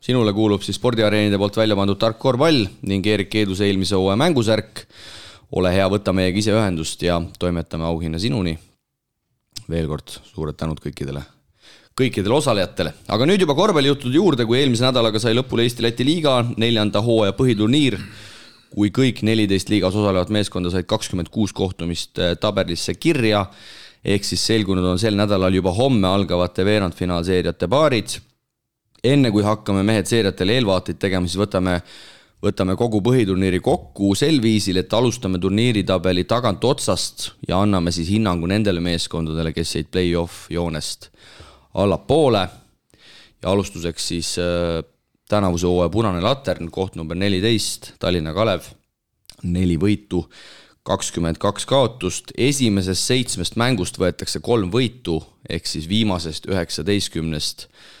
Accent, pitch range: Finnish, 90-110 Hz